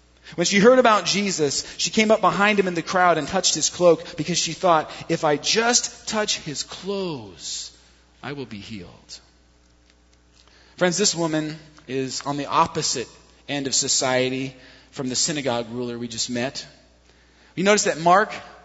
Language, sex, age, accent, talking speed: English, male, 30-49, American, 165 wpm